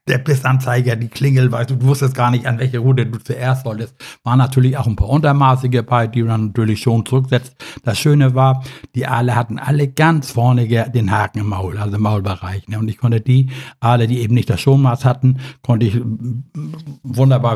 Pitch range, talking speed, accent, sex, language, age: 110-130 Hz, 200 wpm, German, male, German, 60-79